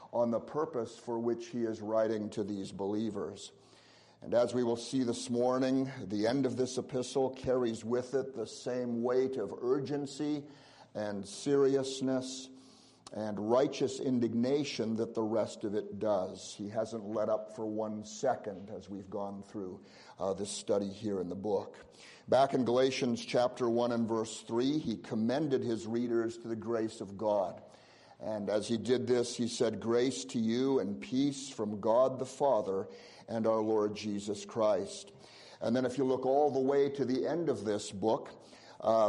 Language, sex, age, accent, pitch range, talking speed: English, male, 50-69, American, 110-130 Hz, 175 wpm